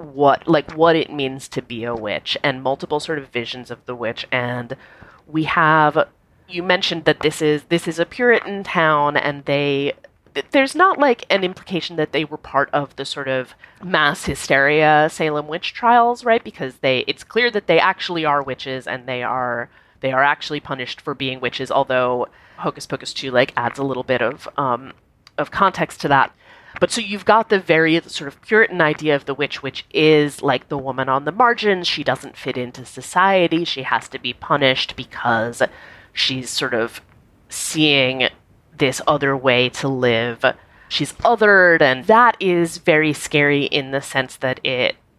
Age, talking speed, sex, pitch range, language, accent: 30-49, 185 wpm, female, 130-175 Hz, English, American